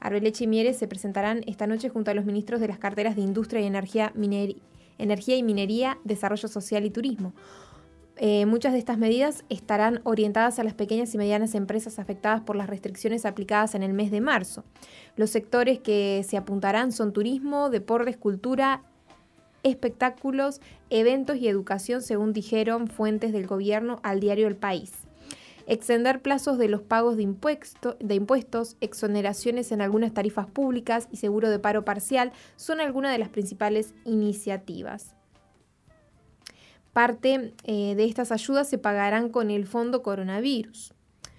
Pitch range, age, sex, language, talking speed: 210-245 Hz, 20-39, female, Spanish, 155 wpm